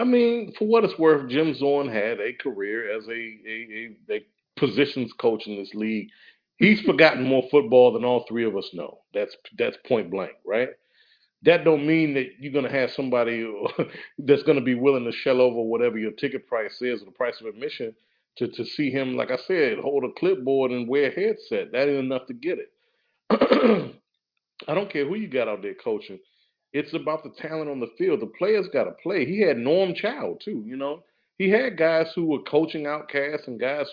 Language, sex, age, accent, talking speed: English, male, 40-59, American, 210 wpm